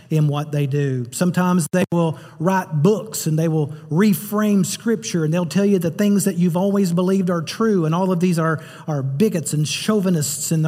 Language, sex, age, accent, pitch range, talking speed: English, male, 40-59, American, 135-180 Hz, 200 wpm